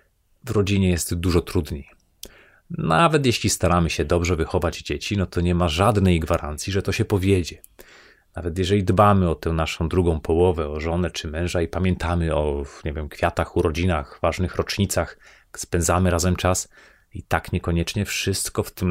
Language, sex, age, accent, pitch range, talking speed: Polish, male, 30-49, native, 85-95 Hz, 165 wpm